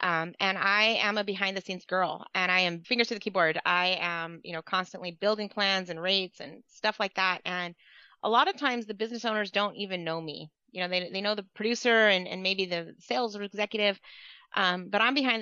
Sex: female